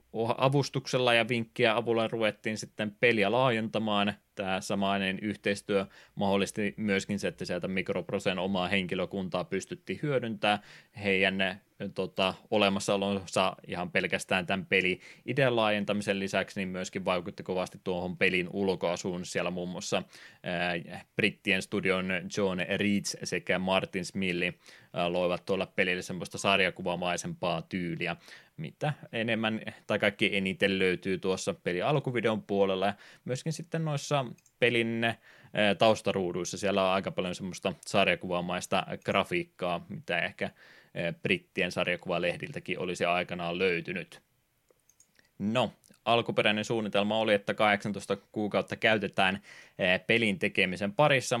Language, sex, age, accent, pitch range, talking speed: Finnish, male, 20-39, native, 95-115 Hz, 110 wpm